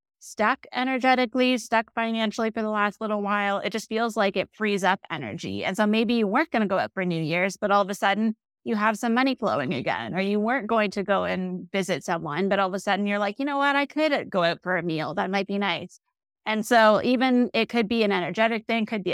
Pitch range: 195-230 Hz